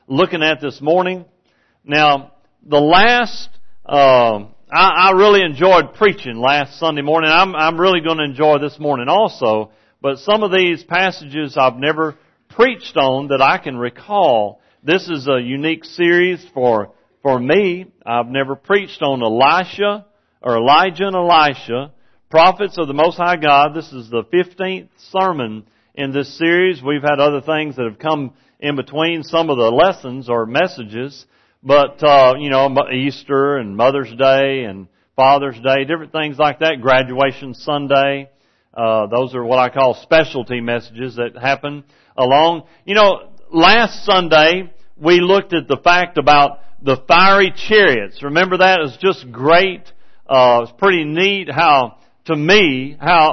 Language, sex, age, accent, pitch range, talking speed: English, male, 50-69, American, 135-175 Hz, 155 wpm